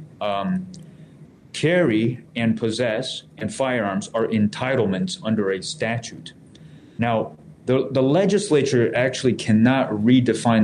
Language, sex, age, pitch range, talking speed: English, male, 30-49, 110-150 Hz, 100 wpm